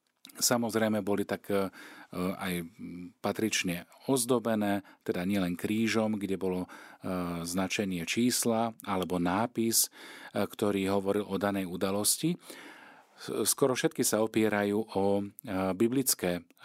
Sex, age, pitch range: male, 40-59, 95-115 Hz